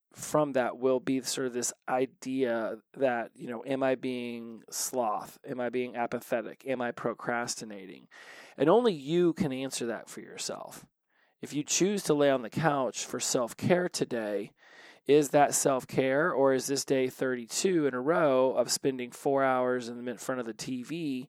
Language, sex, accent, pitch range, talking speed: English, male, American, 125-150 Hz, 175 wpm